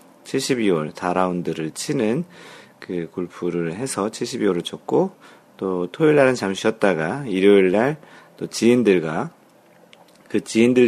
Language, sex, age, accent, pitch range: Korean, male, 40-59, native, 85-115 Hz